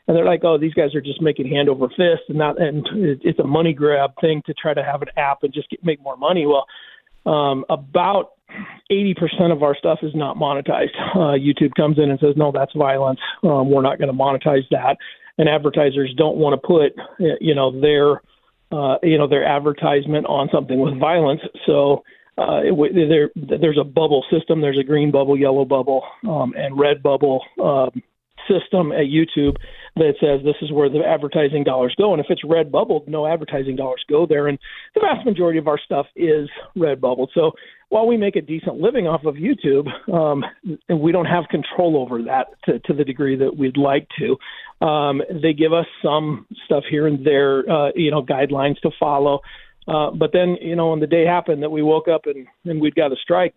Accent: American